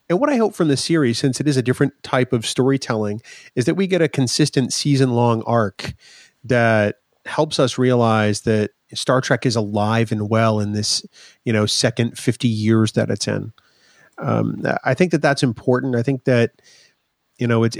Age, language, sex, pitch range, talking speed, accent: 30-49, English, male, 110-135 Hz, 190 wpm, American